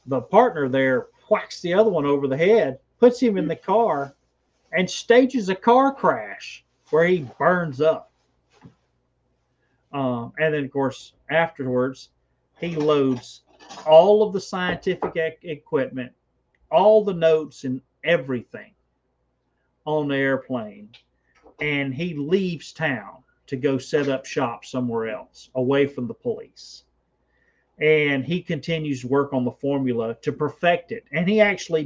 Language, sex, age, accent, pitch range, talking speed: English, male, 40-59, American, 130-160 Hz, 140 wpm